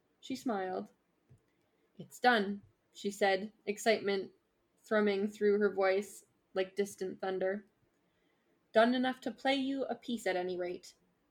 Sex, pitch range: female, 195-240 Hz